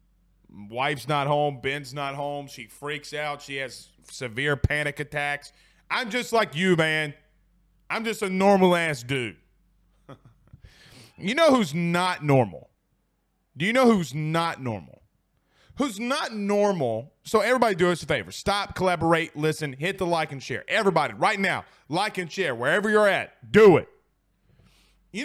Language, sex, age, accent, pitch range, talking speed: English, male, 30-49, American, 145-195 Hz, 155 wpm